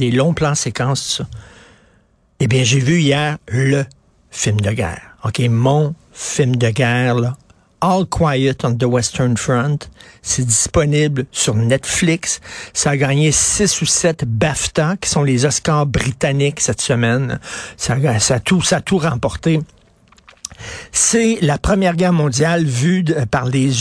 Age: 60-79